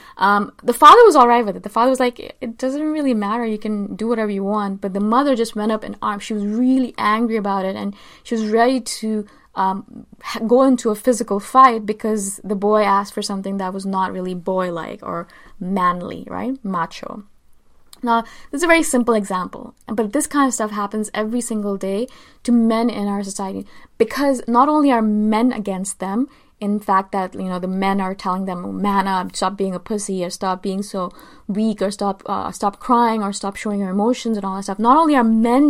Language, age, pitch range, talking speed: English, 20-39, 195-240 Hz, 215 wpm